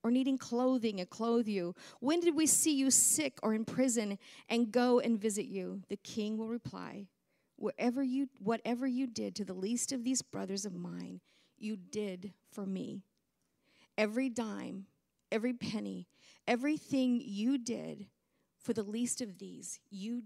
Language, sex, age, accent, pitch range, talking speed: English, female, 40-59, American, 200-245 Hz, 160 wpm